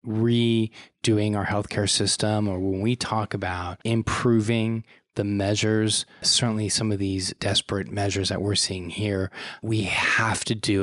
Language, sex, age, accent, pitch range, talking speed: English, male, 20-39, American, 95-110 Hz, 145 wpm